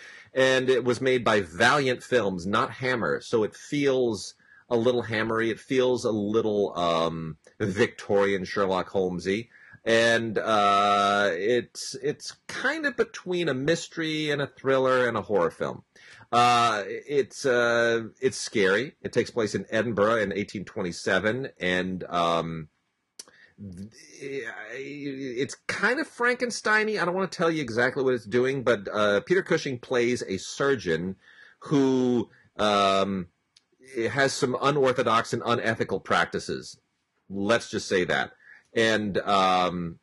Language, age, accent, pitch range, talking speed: English, 30-49, American, 95-130 Hz, 135 wpm